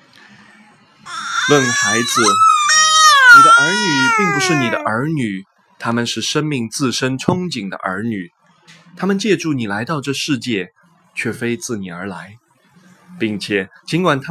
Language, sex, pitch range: Chinese, male, 120-195 Hz